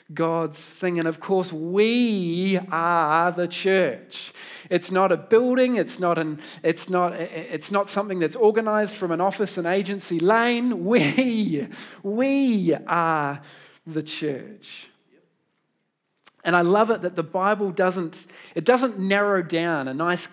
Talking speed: 140 wpm